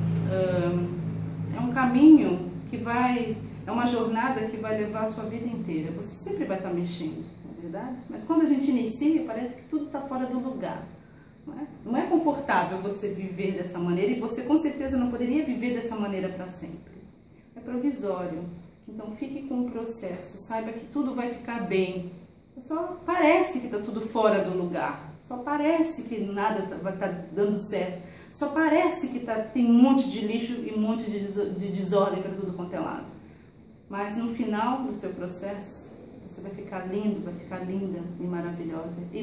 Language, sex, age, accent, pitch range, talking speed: Portuguese, female, 40-59, Brazilian, 185-250 Hz, 180 wpm